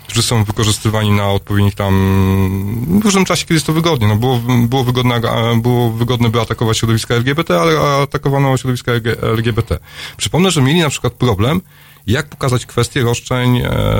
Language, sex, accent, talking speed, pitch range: Polish, male, native, 160 wpm, 100-125 Hz